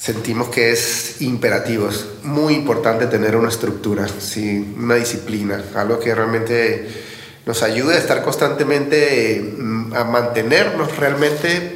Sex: male